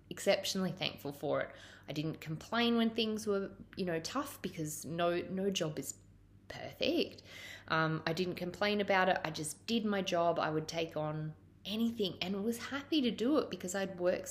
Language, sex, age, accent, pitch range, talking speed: English, female, 20-39, Australian, 150-195 Hz, 185 wpm